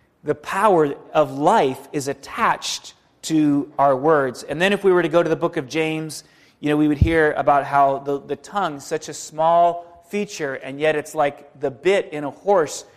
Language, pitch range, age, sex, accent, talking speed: English, 145-170 Hz, 30-49, male, American, 205 wpm